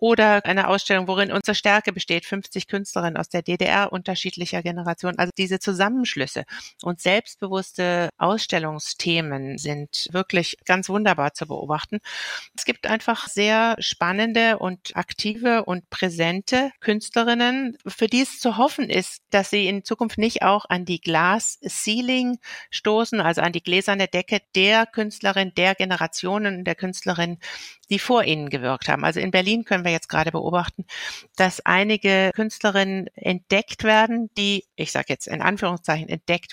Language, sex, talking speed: German, female, 145 wpm